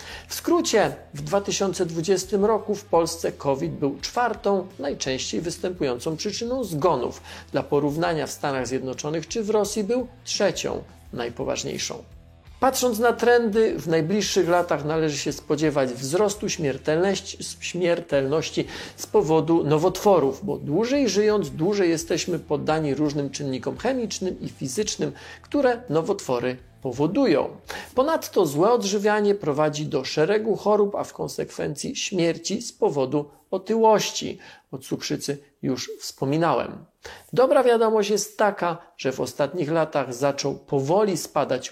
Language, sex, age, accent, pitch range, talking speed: Polish, male, 40-59, native, 150-215 Hz, 120 wpm